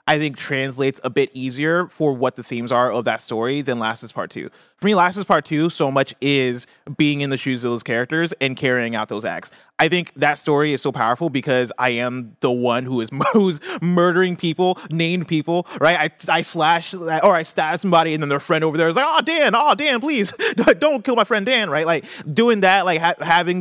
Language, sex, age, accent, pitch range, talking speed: English, male, 30-49, American, 125-170 Hz, 235 wpm